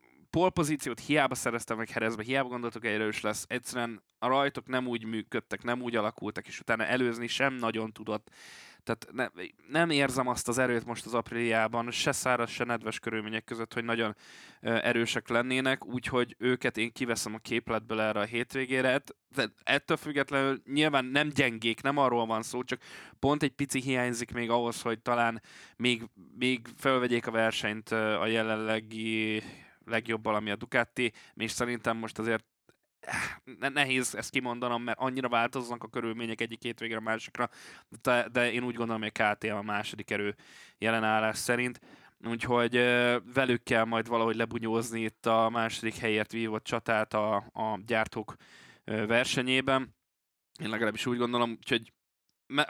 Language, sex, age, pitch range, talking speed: Hungarian, male, 20-39, 110-125 Hz, 155 wpm